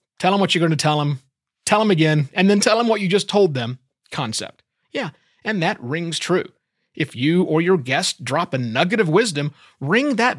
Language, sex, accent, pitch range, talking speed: English, male, American, 140-195 Hz, 220 wpm